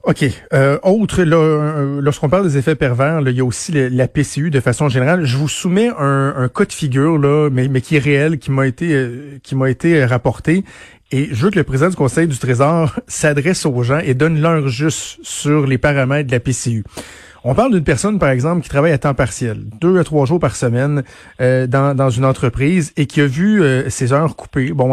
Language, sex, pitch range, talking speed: French, male, 130-165 Hz, 225 wpm